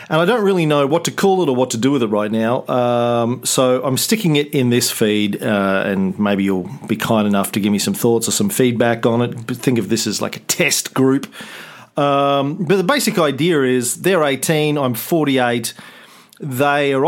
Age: 40-59